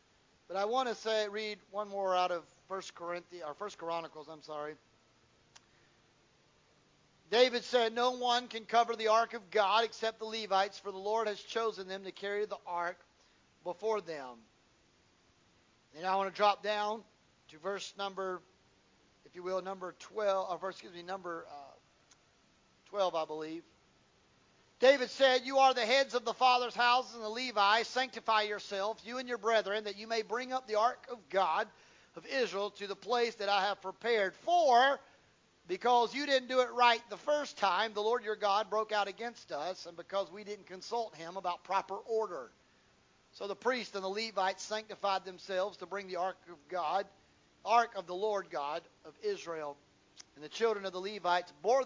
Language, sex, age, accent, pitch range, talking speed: English, male, 40-59, American, 175-225 Hz, 180 wpm